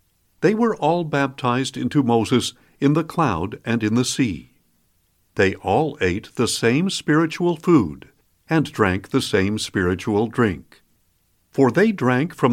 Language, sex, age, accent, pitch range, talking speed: English, male, 60-79, American, 110-160 Hz, 145 wpm